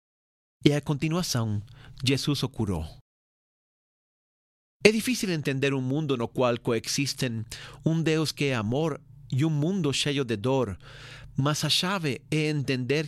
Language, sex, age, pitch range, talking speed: Portuguese, male, 40-59, 120-150 Hz, 140 wpm